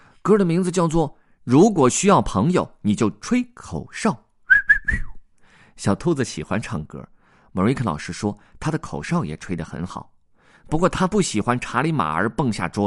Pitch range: 100-165 Hz